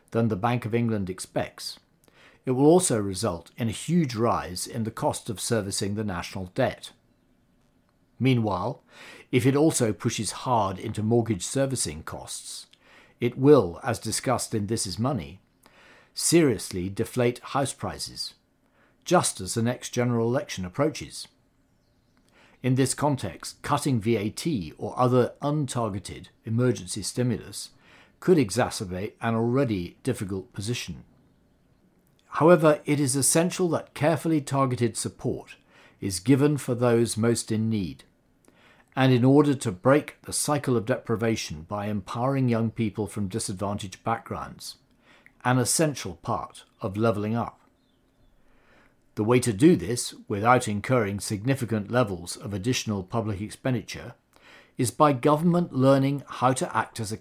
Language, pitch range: English, 105-130 Hz